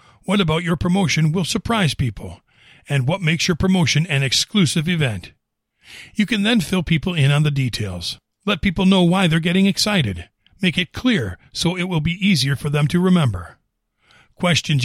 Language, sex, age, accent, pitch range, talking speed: English, male, 50-69, American, 140-185 Hz, 180 wpm